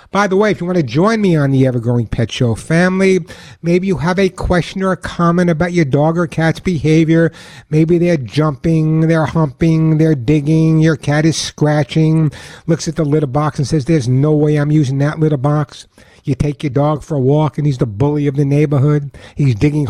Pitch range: 135-165 Hz